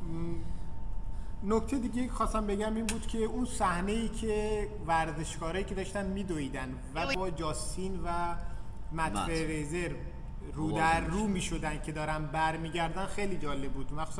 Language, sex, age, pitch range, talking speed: Persian, male, 30-49, 150-175 Hz, 135 wpm